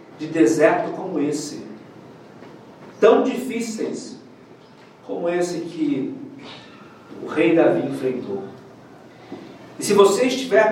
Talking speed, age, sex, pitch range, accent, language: 95 wpm, 50-69, male, 195-250 Hz, Brazilian, Portuguese